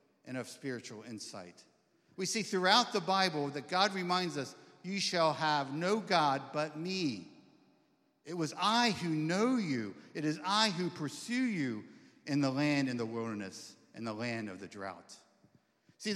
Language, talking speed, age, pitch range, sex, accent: English, 165 wpm, 50-69, 145-190 Hz, male, American